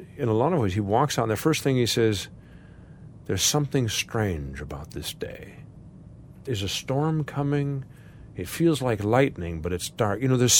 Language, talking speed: English, 190 wpm